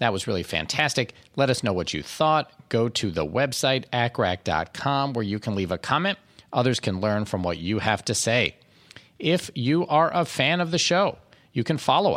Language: English